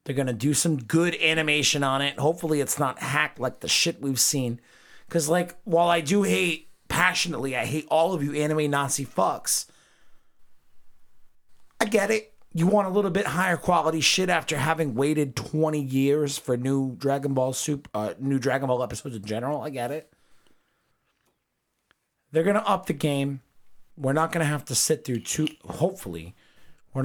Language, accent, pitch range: English, American, 125-165 Hz